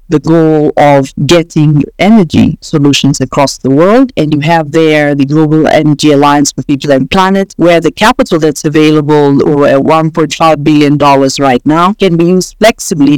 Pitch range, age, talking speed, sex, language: 150-185 Hz, 50-69, 165 wpm, female, English